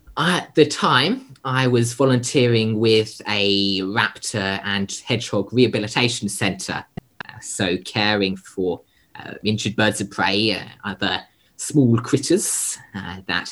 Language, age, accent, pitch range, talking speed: English, 20-39, British, 95-120 Hz, 120 wpm